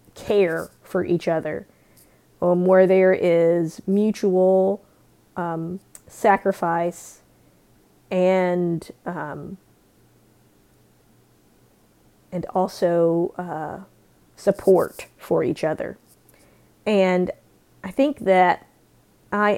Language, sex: English, female